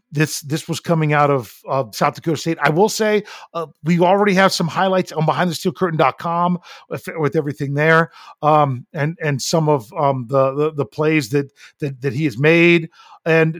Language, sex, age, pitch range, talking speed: English, male, 40-59, 150-190 Hz, 195 wpm